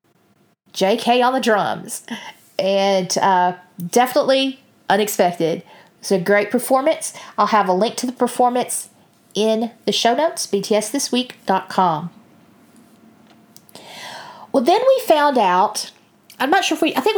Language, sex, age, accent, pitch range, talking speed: English, female, 40-59, American, 195-250 Hz, 125 wpm